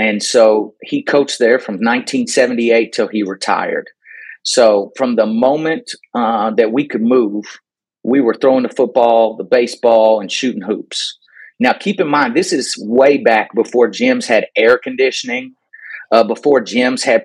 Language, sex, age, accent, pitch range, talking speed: English, male, 30-49, American, 110-160 Hz, 160 wpm